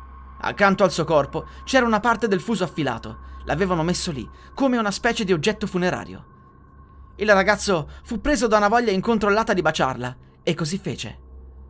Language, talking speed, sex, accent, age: Italian, 165 wpm, male, native, 30-49